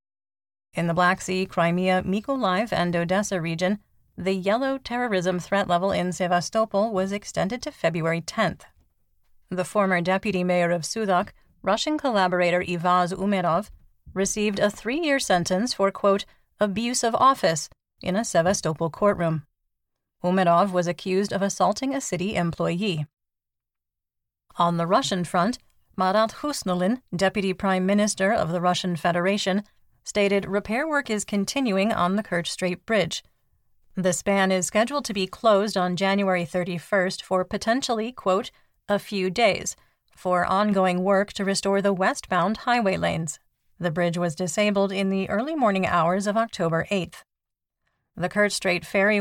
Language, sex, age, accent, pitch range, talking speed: English, female, 30-49, American, 175-205 Hz, 140 wpm